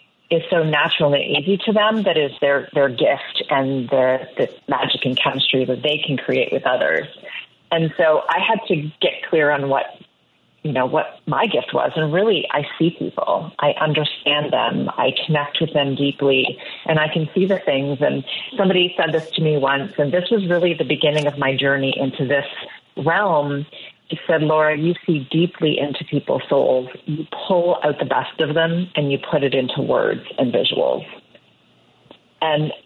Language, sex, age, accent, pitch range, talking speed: English, female, 40-59, American, 140-170 Hz, 185 wpm